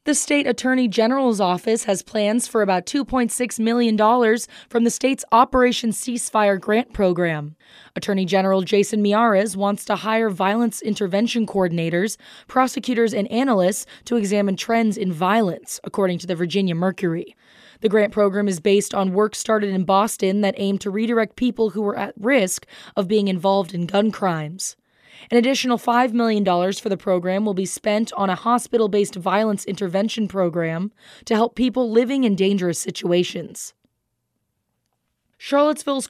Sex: female